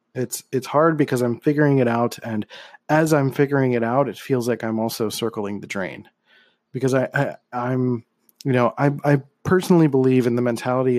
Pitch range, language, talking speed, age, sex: 115-145 Hz, English, 190 wpm, 30-49, male